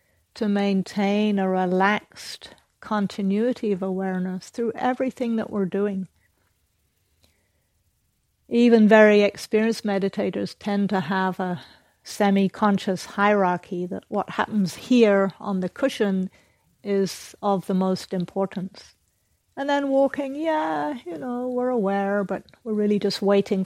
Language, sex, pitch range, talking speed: English, female, 185-215 Hz, 120 wpm